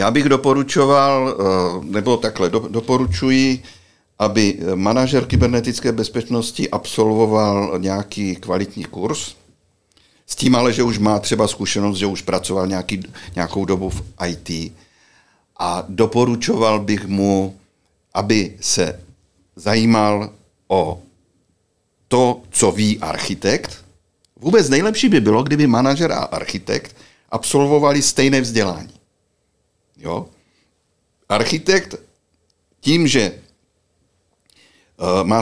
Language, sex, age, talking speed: Czech, male, 60-79, 95 wpm